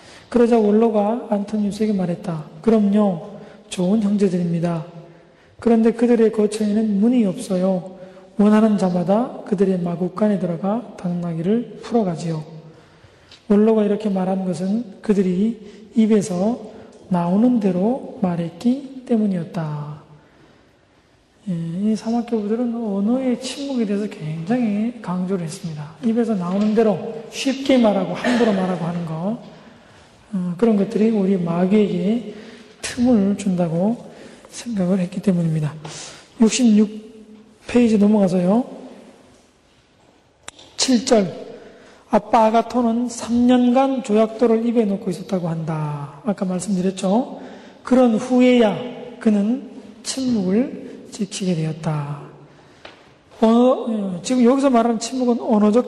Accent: native